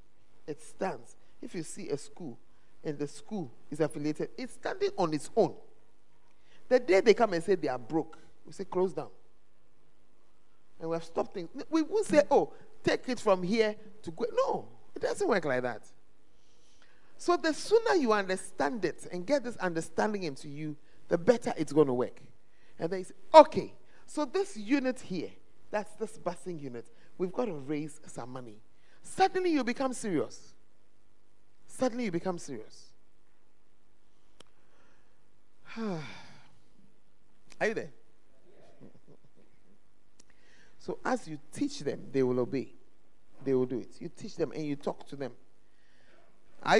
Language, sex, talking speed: English, male, 155 wpm